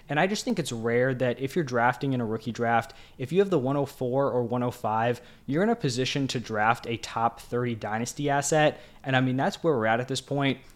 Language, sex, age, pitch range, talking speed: English, male, 10-29, 120-140 Hz, 235 wpm